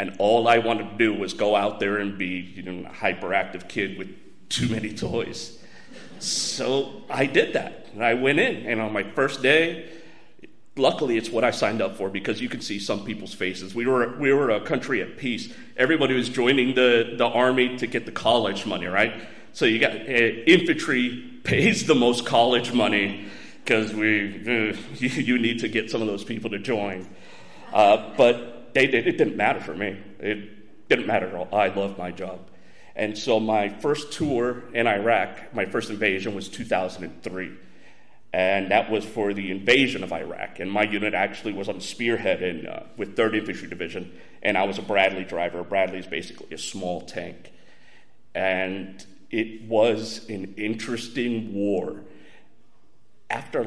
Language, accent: English, American